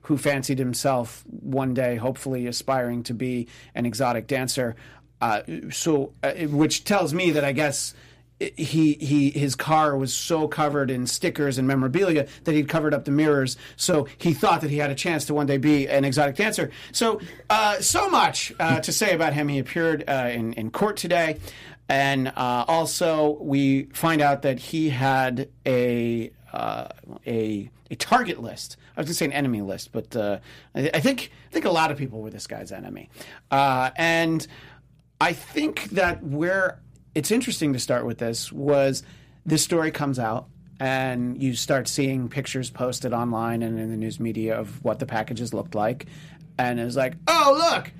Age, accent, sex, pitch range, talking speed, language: 40-59, American, male, 125-155 Hz, 185 wpm, English